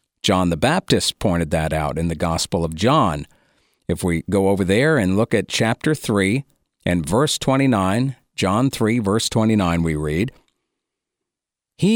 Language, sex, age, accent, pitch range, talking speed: English, male, 50-69, American, 90-120 Hz, 155 wpm